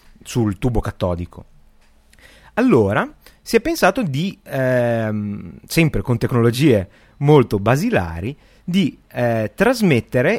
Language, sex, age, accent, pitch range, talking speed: Italian, male, 30-49, native, 105-155 Hz, 100 wpm